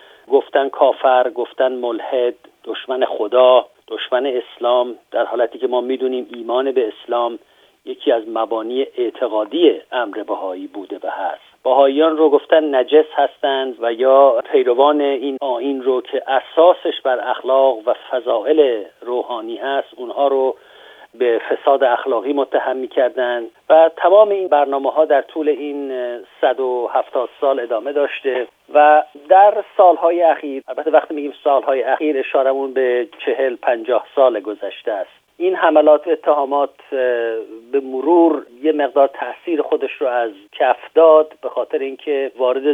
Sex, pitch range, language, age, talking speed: male, 130-165 Hz, Persian, 50-69, 135 wpm